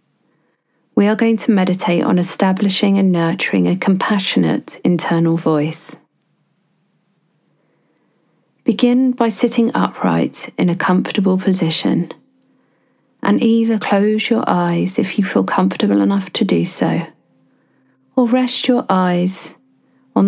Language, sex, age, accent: English, female, 40-59, British